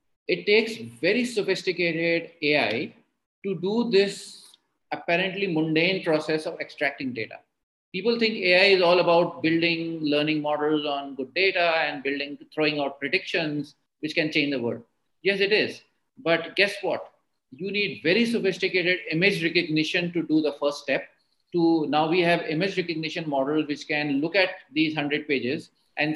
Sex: male